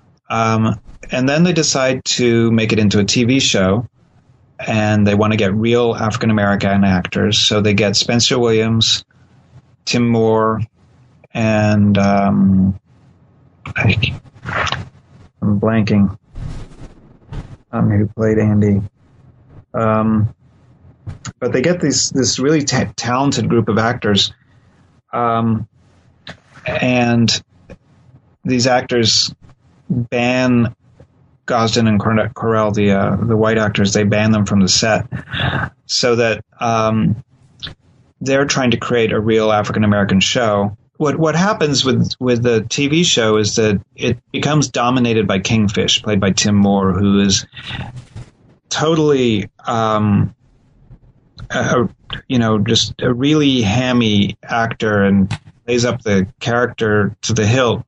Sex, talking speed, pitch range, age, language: male, 120 wpm, 105-125 Hz, 30-49, English